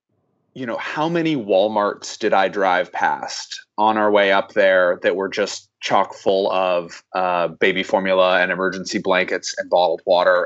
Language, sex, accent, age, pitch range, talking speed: English, male, American, 30-49, 100-120 Hz, 165 wpm